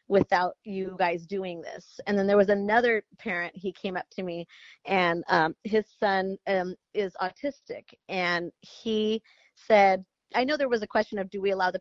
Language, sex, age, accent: English, female, 30-49, American